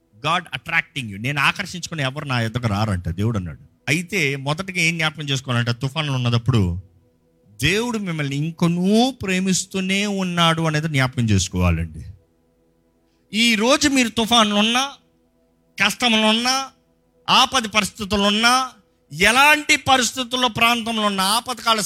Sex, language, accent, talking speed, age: male, Telugu, native, 100 wpm, 50-69